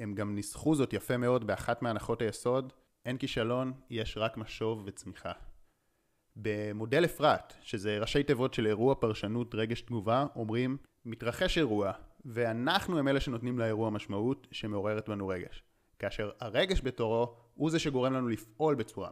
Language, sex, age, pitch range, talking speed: Hebrew, male, 30-49, 110-135 Hz, 145 wpm